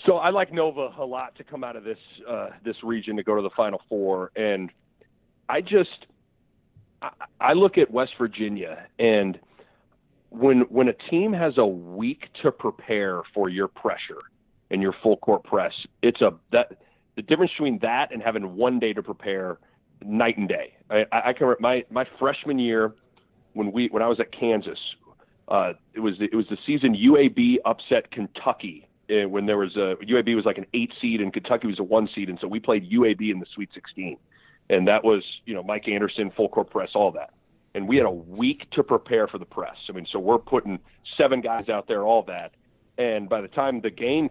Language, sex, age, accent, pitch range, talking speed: English, male, 40-59, American, 105-130 Hz, 205 wpm